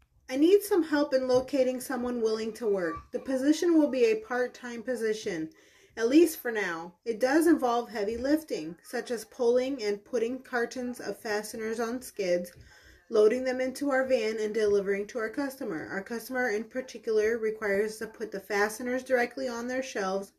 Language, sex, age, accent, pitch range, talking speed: English, female, 30-49, American, 215-265 Hz, 175 wpm